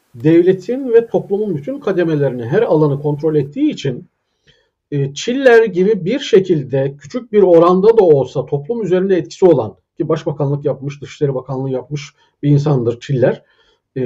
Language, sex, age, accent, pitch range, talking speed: Turkish, male, 50-69, native, 155-190 Hz, 135 wpm